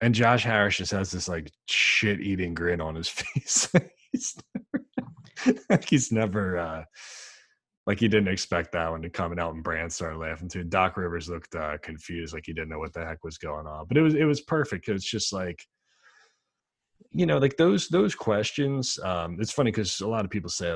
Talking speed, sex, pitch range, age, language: 215 wpm, male, 85-110 Hz, 20-39, English